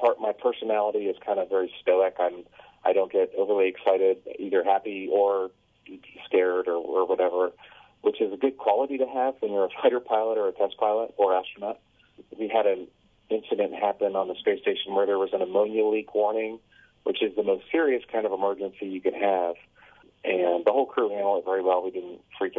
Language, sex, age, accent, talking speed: English, male, 30-49, American, 205 wpm